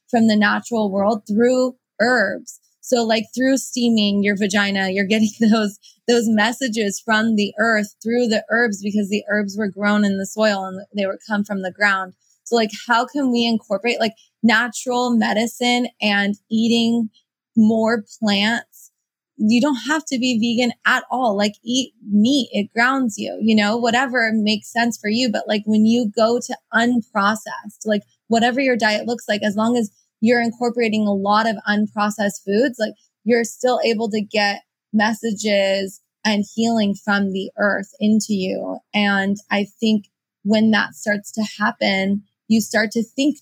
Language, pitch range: English, 200-230 Hz